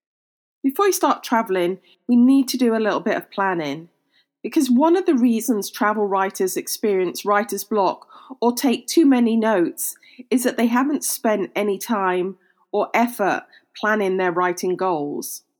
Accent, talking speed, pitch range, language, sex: British, 160 wpm, 185-255 Hz, English, female